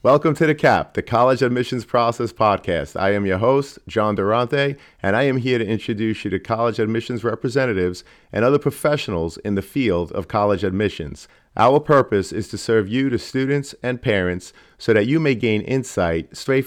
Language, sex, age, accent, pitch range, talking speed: English, male, 40-59, American, 95-125 Hz, 185 wpm